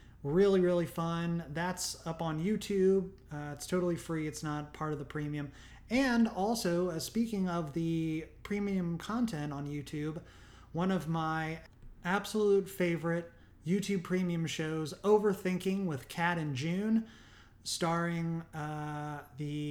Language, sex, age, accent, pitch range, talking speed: English, male, 30-49, American, 150-190 Hz, 130 wpm